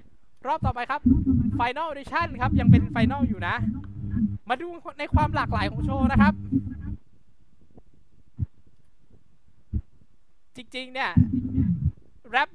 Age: 20-39